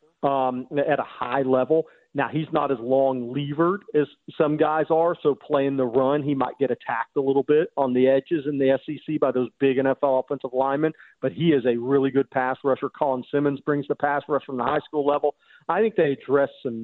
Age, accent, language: 40-59, American, English